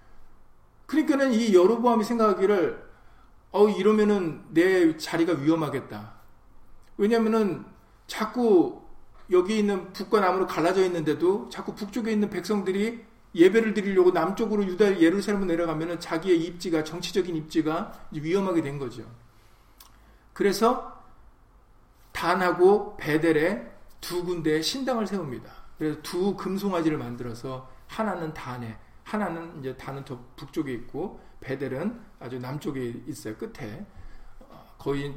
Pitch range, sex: 135-210 Hz, male